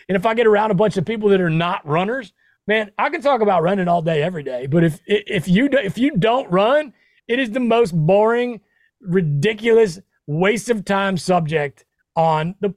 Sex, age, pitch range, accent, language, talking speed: male, 40-59, 170-225 Hz, American, English, 200 wpm